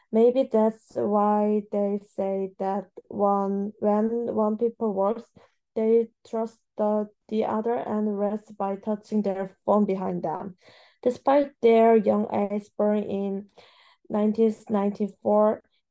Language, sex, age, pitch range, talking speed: English, female, 20-39, 195-220 Hz, 115 wpm